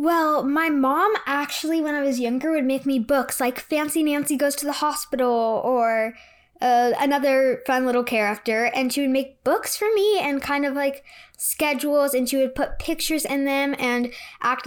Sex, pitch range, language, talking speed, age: female, 235-285 Hz, English, 190 wpm, 10-29